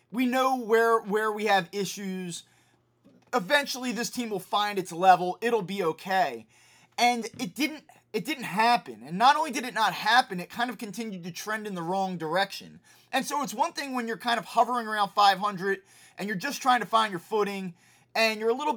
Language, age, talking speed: English, 20-39, 205 wpm